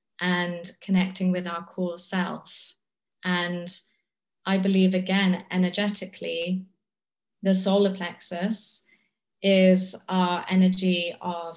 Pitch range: 180-195 Hz